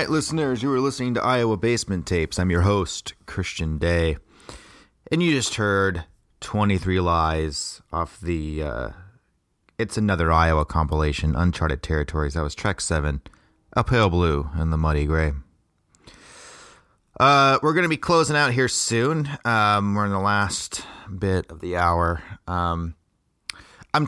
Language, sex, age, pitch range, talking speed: English, male, 30-49, 85-110 Hz, 150 wpm